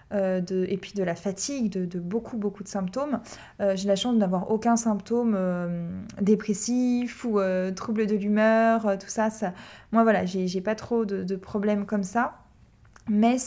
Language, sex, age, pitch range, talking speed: French, female, 20-39, 185-215 Hz, 185 wpm